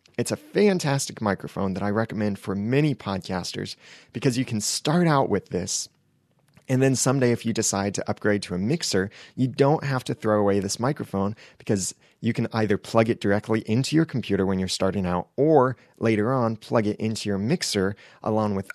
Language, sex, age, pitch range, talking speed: English, male, 30-49, 95-120 Hz, 190 wpm